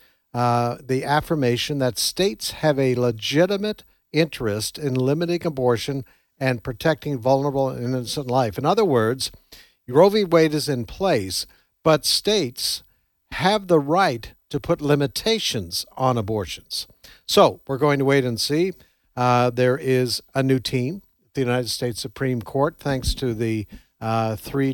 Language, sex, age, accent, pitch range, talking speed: English, male, 60-79, American, 115-145 Hz, 145 wpm